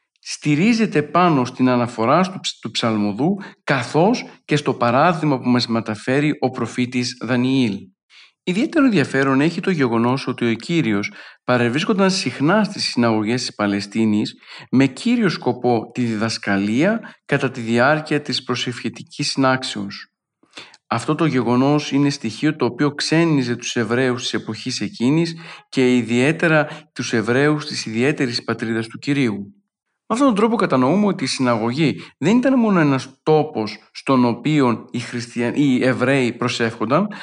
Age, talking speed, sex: 50-69, 135 wpm, male